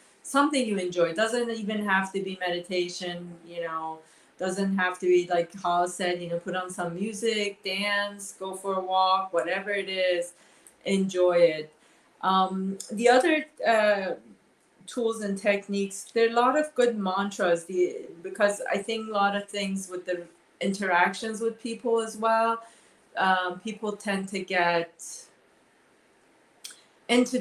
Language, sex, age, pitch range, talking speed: English, female, 30-49, 180-225 Hz, 150 wpm